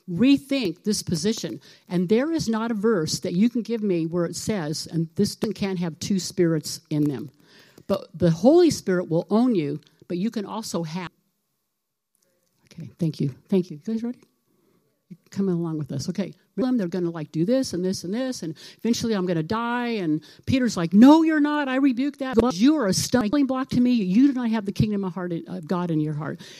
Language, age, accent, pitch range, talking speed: English, 60-79, American, 175-240 Hz, 210 wpm